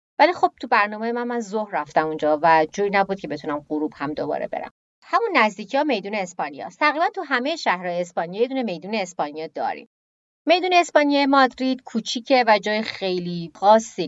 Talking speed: 180 wpm